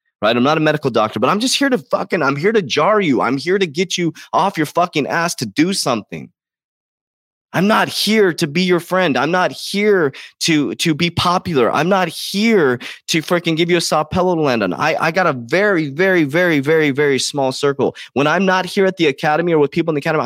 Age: 20-39